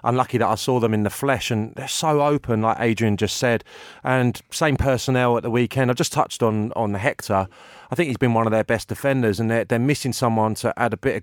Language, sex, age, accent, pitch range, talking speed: English, male, 30-49, British, 105-125 Hz, 250 wpm